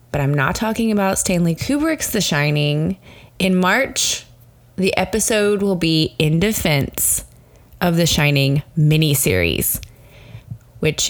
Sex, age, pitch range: female, 20-39, 155-200 Hz